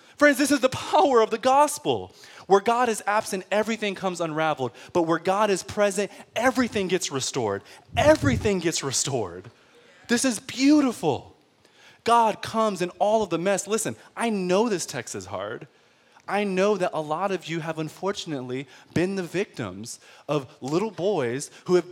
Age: 20-39